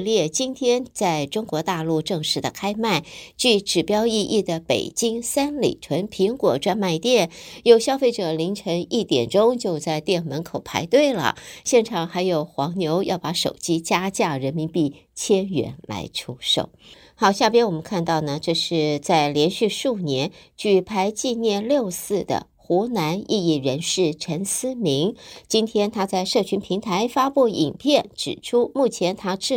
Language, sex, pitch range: Chinese, female, 165-225 Hz